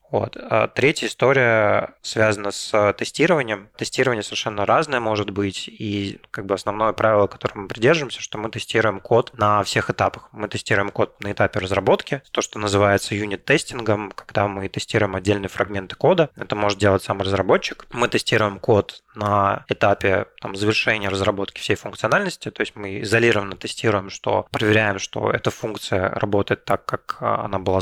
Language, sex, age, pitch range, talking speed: Russian, male, 20-39, 100-115 Hz, 155 wpm